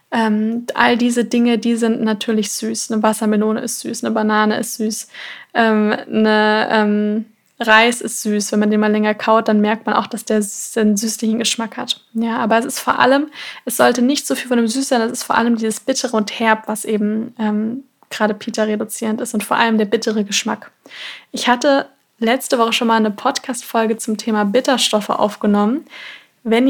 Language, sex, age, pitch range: German, female, 20-39, 215-240 Hz